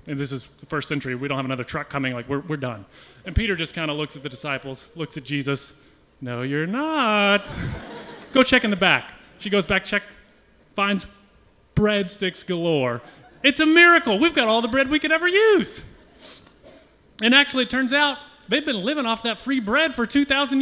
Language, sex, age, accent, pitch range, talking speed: English, male, 30-49, American, 150-225 Hz, 200 wpm